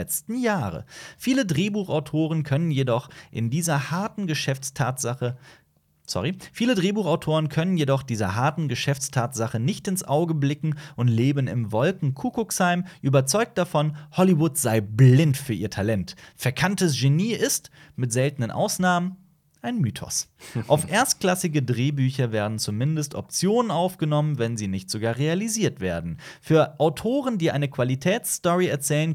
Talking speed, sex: 125 wpm, male